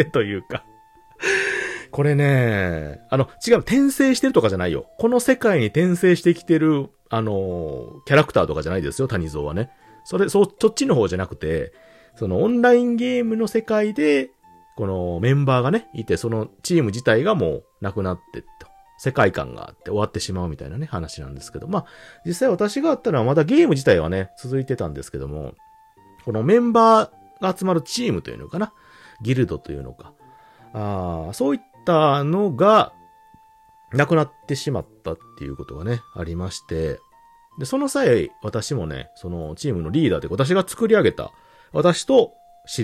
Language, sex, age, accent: Japanese, male, 40-59, native